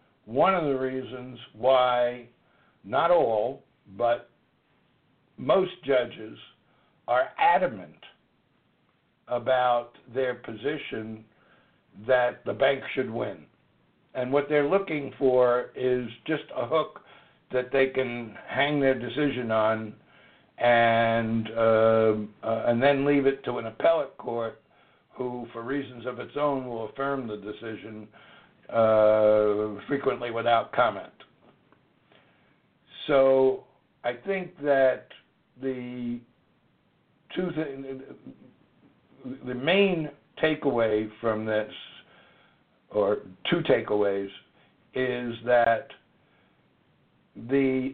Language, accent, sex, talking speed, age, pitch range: English, American, male, 100 wpm, 60-79, 115-140 Hz